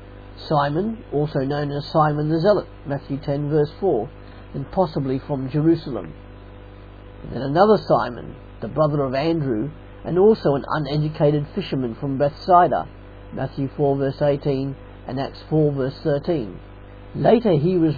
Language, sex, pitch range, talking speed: English, male, 100-150 Hz, 140 wpm